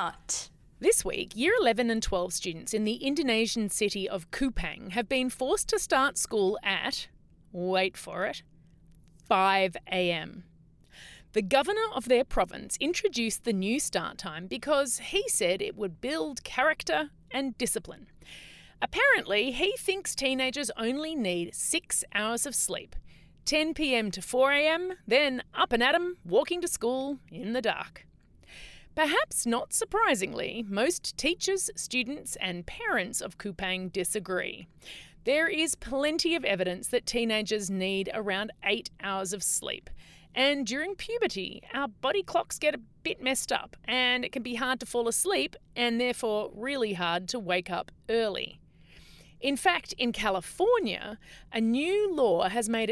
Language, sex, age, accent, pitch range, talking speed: English, female, 30-49, Australian, 205-300 Hz, 145 wpm